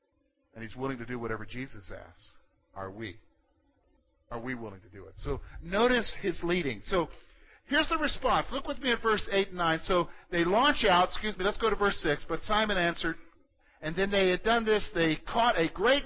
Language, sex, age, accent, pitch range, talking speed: English, male, 50-69, American, 145-240 Hz, 210 wpm